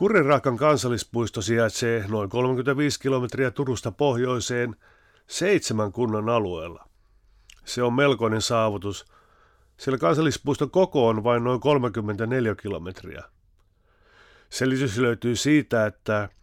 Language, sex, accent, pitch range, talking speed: English, male, Finnish, 110-135 Hz, 100 wpm